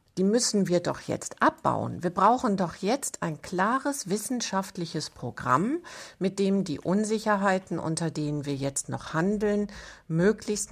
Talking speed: 135 wpm